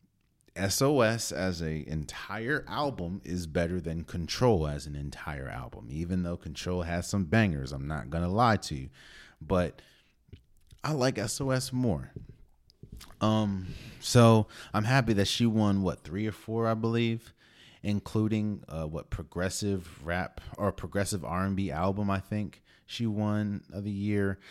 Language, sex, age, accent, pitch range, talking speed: English, male, 30-49, American, 80-105 Hz, 145 wpm